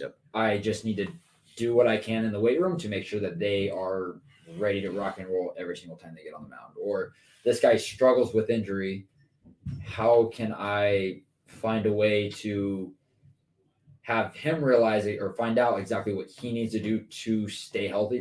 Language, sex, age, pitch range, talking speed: English, male, 20-39, 100-130 Hz, 200 wpm